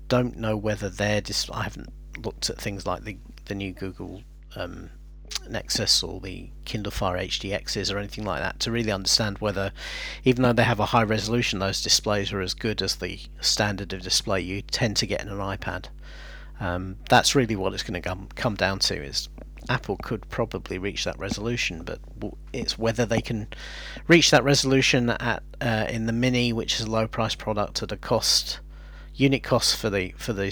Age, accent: 40-59, British